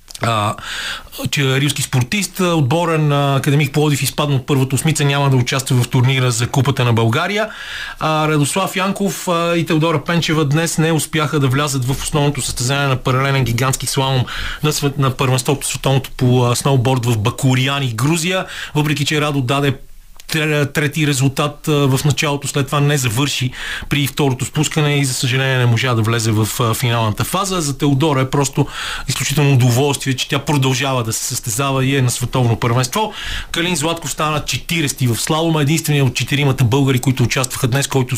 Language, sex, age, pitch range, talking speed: Bulgarian, male, 30-49, 130-150 Hz, 165 wpm